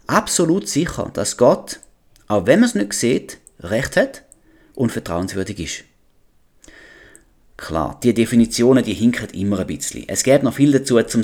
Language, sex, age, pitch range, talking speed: German, male, 30-49, 110-145 Hz, 155 wpm